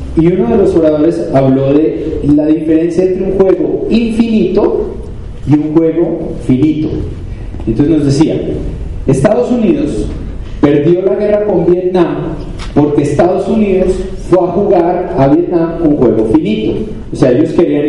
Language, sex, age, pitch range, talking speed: Spanish, male, 40-59, 135-195 Hz, 140 wpm